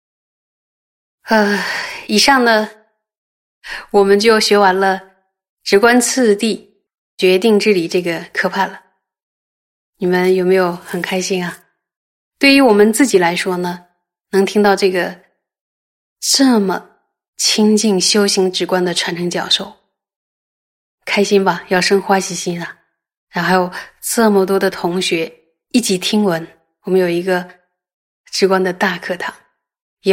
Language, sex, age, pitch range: Chinese, female, 20-39, 180-210 Hz